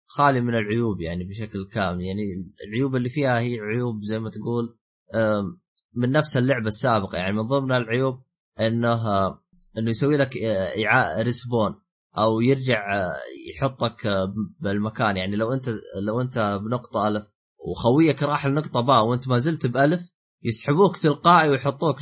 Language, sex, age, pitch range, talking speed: Arabic, male, 20-39, 110-145 Hz, 135 wpm